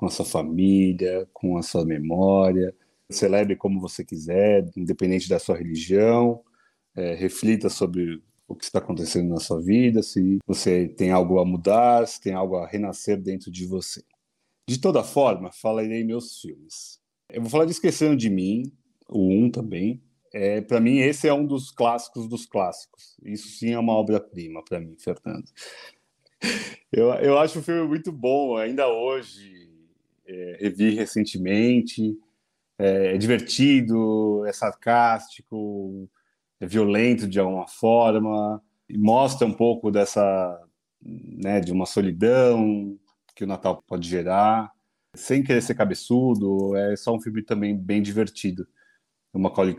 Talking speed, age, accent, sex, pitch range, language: 150 wpm, 30-49, Brazilian, male, 95-115 Hz, Portuguese